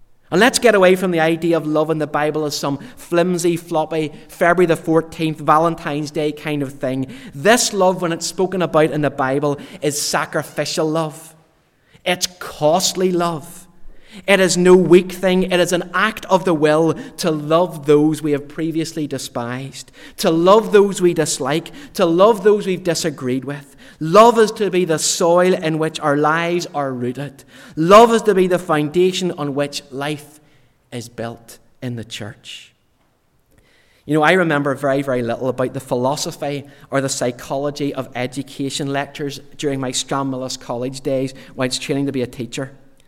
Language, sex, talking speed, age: English, male, 170 wpm, 30-49